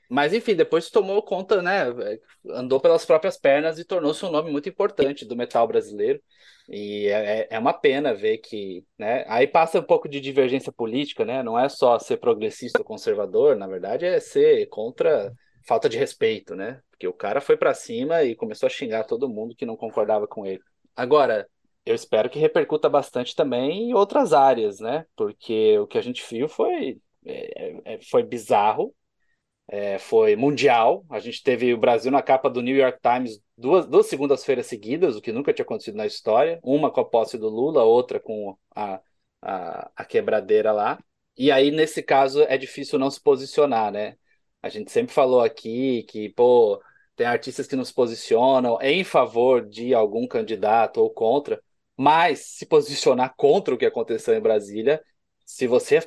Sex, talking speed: male, 180 wpm